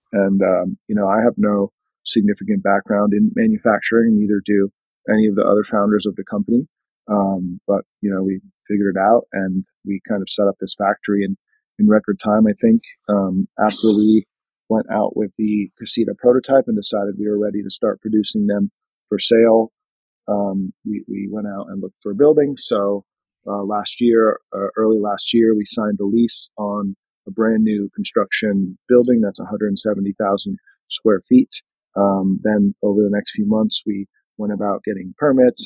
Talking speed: 180 wpm